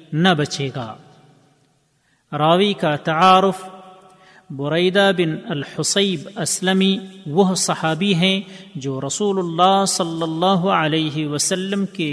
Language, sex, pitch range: Urdu, male, 155-190 Hz